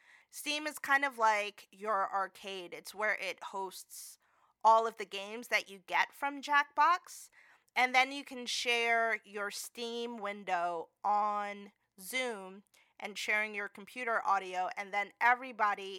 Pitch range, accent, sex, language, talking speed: 200-270 Hz, American, female, English, 145 wpm